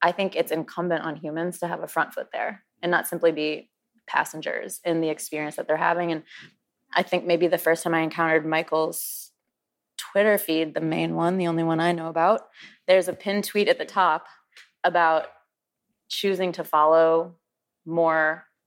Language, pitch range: English, 155-170 Hz